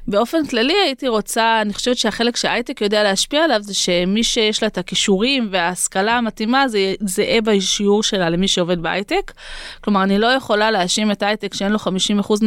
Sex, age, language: female, 20-39, English